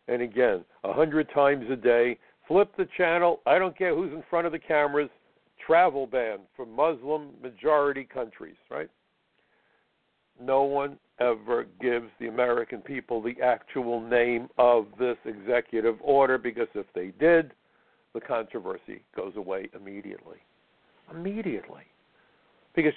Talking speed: 130 wpm